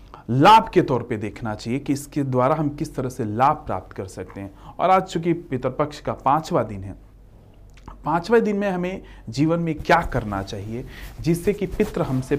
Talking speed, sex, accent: 190 wpm, male, native